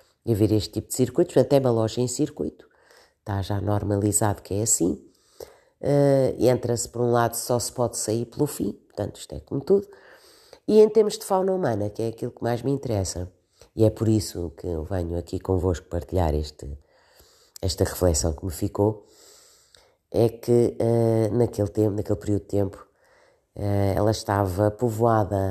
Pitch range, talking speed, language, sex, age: 95-135 Hz, 175 wpm, Portuguese, female, 30-49